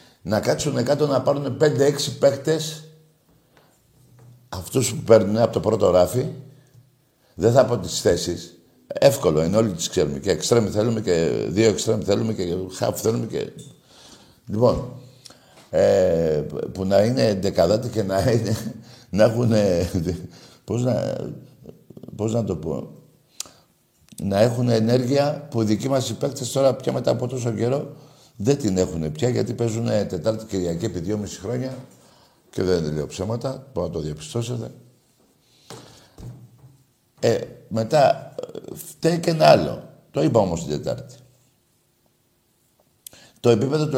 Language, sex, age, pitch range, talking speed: Greek, male, 60-79, 105-140 Hz, 135 wpm